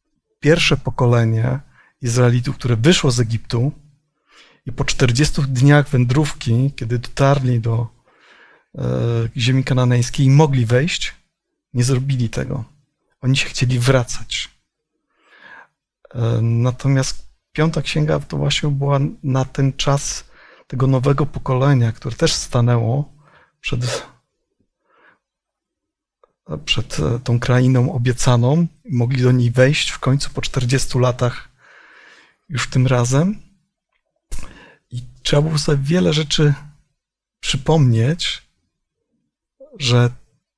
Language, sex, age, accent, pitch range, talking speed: Polish, male, 40-59, native, 120-145 Hz, 100 wpm